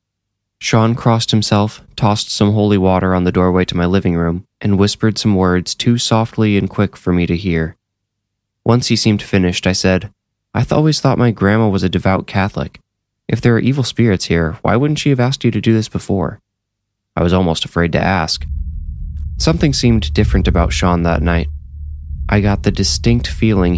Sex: male